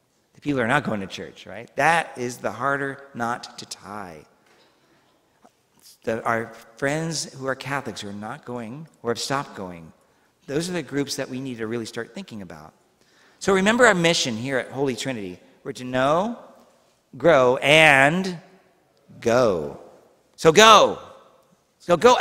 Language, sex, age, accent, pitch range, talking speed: English, male, 50-69, American, 125-190 Hz, 155 wpm